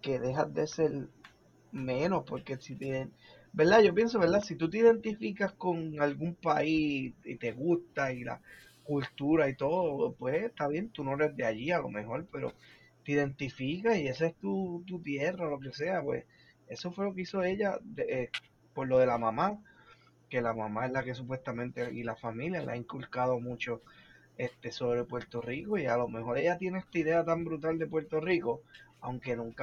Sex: male